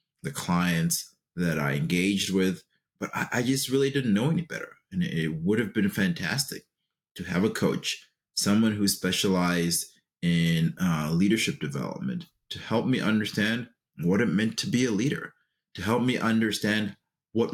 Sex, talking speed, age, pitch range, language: male, 165 wpm, 30-49, 90-130 Hz, English